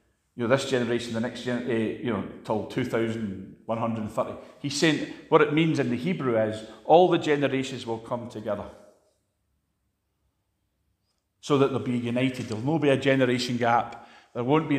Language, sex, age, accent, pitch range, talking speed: English, male, 40-59, British, 105-135 Hz, 160 wpm